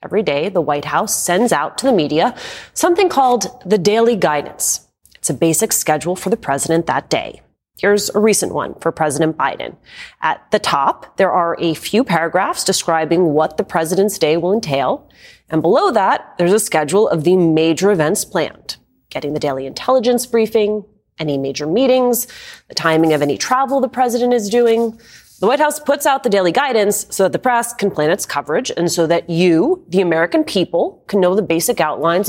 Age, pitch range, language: 30-49, 165-235 Hz, English